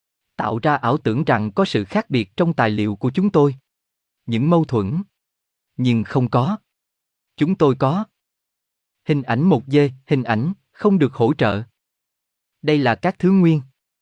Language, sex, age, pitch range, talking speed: Vietnamese, male, 20-39, 110-155 Hz, 165 wpm